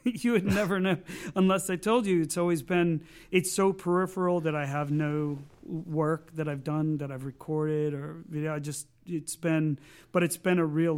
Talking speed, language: 210 wpm, English